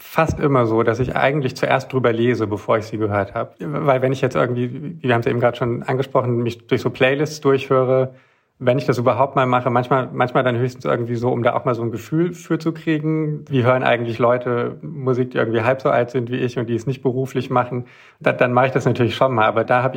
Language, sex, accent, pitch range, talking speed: German, male, German, 120-130 Hz, 250 wpm